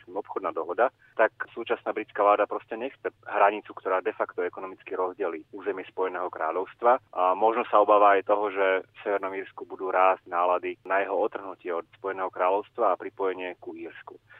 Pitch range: 95-130 Hz